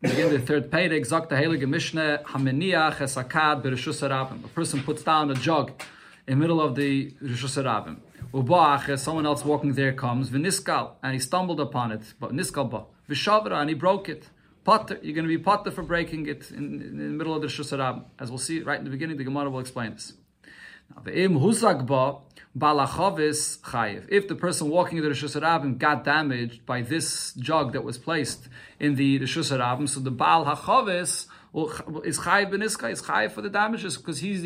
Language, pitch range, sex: English, 135-165 Hz, male